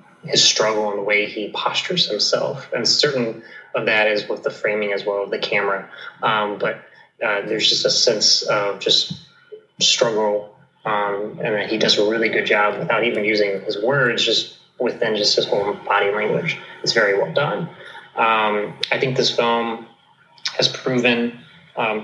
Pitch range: 105-120 Hz